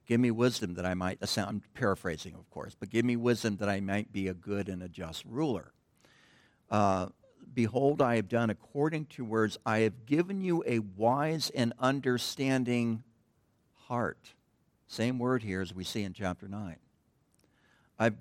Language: English